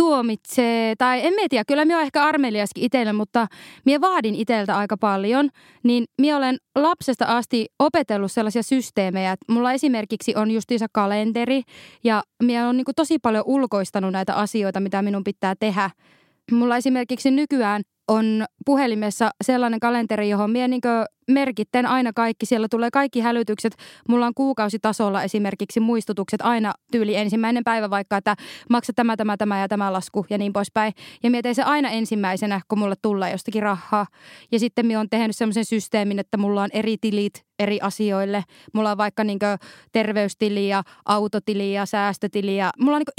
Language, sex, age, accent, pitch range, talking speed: Finnish, female, 20-39, native, 205-255 Hz, 165 wpm